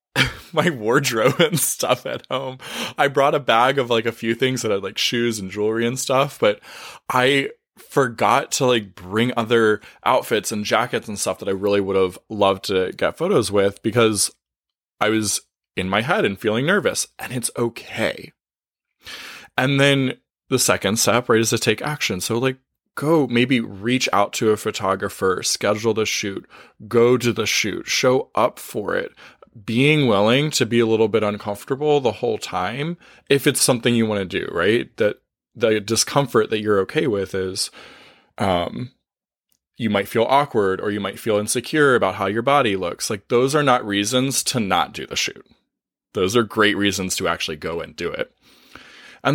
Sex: male